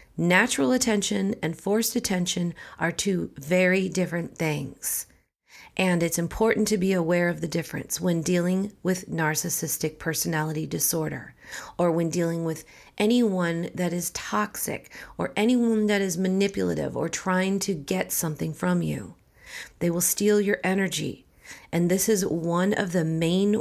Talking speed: 145 wpm